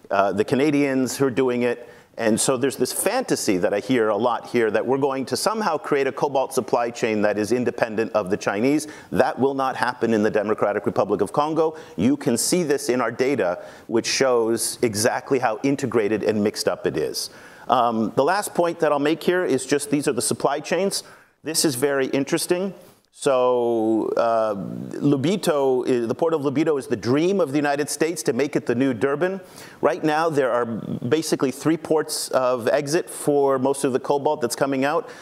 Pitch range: 125-155 Hz